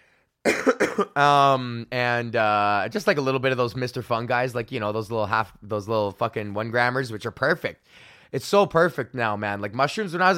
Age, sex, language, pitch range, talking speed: 20-39, male, English, 115-135 Hz, 215 wpm